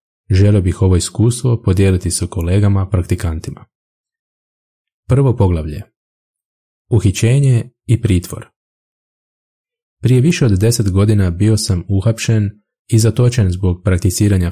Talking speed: 100 wpm